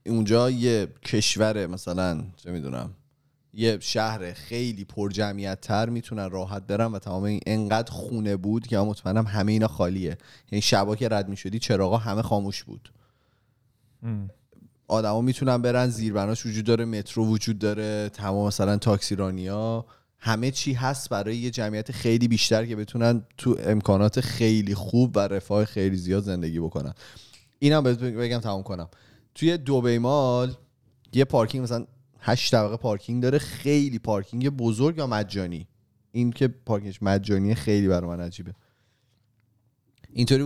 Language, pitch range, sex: Persian, 100-125 Hz, male